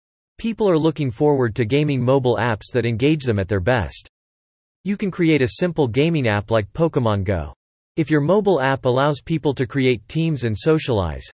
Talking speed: 185 wpm